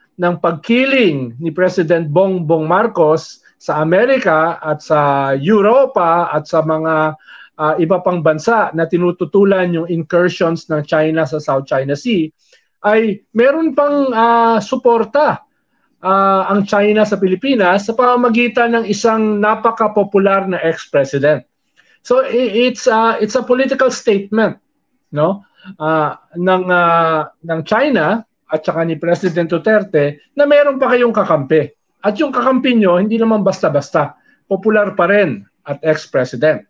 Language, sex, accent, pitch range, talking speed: English, male, Filipino, 160-220 Hz, 130 wpm